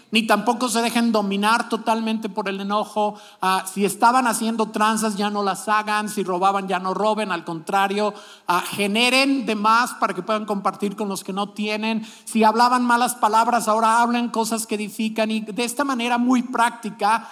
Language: Spanish